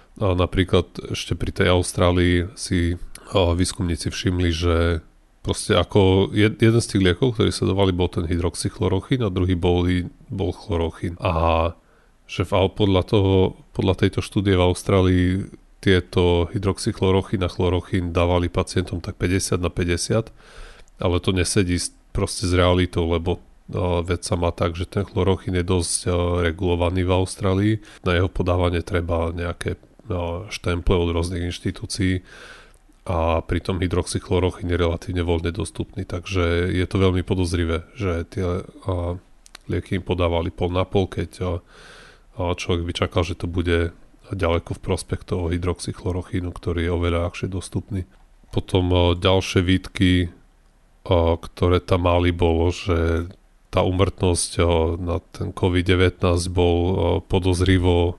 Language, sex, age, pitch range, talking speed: Slovak, male, 30-49, 85-95 Hz, 130 wpm